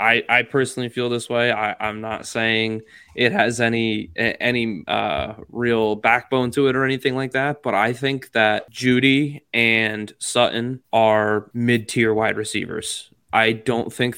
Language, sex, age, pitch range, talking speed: English, male, 20-39, 110-125 Hz, 160 wpm